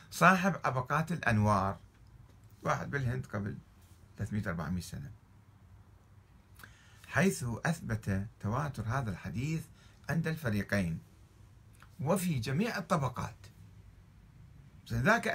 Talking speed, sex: 80 wpm, male